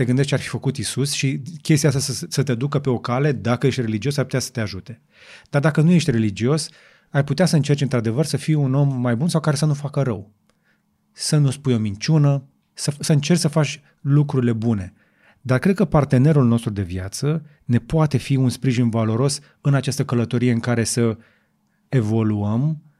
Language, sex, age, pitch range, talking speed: Romanian, male, 30-49, 120-155 Hz, 205 wpm